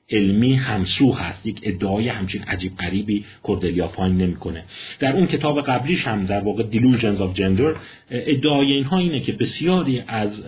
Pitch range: 100-130 Hz